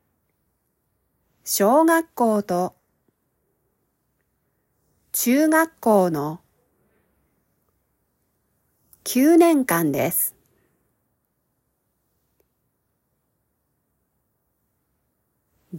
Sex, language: female, Japanese